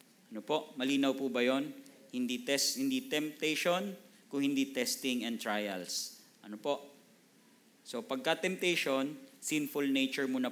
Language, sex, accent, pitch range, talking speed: Filipino, male, native, 120-165 Hz, 120 wpm